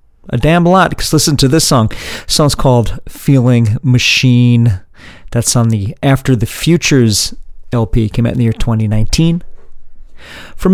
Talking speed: 155 wpm